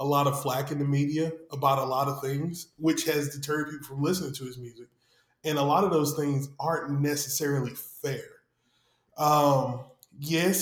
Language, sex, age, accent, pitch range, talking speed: English, male, 20-39, American, 140-170 Hz, 180 wpm